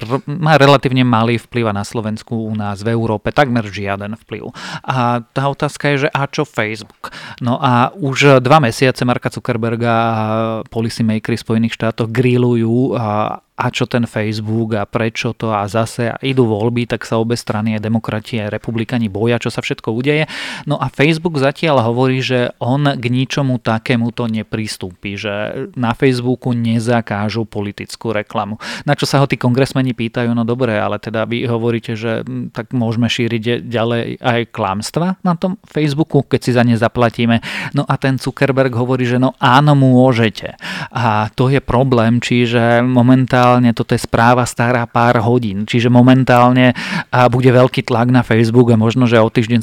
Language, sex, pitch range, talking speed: Slovak, male, 115-125 Hz, 170 wpm